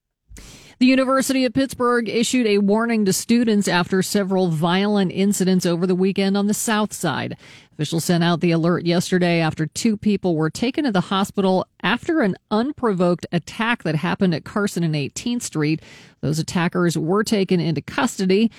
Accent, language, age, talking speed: American, English, 40-59, 165 wpm